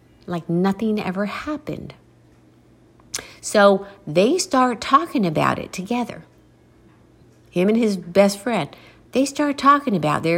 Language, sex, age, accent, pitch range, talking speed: English, female, 50-69, American, 160-210 Hz, 120 wpm